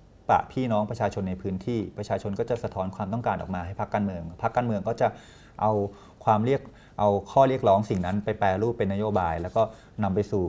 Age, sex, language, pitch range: 30-49, male, Thai, 95-120 Hz